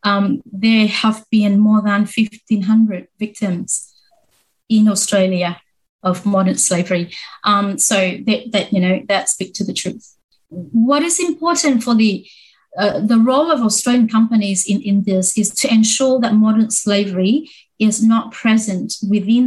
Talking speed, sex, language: 150 wpm, female, English